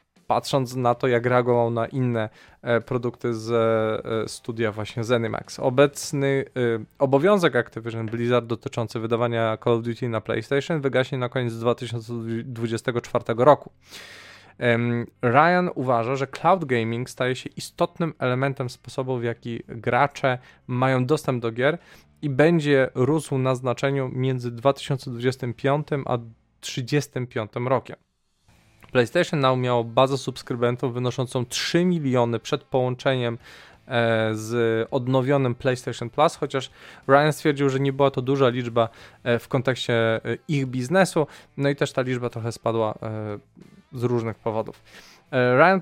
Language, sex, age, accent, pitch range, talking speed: Polish, male, 20-39, native, 115-140 Hz, 120 wpm